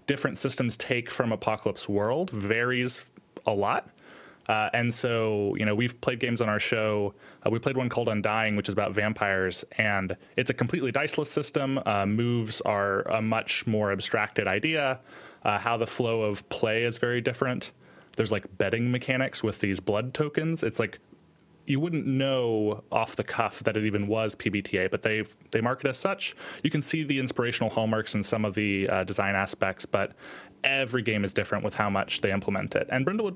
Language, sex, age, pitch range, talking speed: English, male, 20-39, 105-130 Hz, 190 wpm